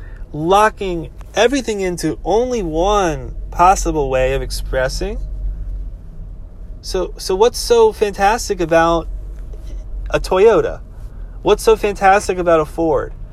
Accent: American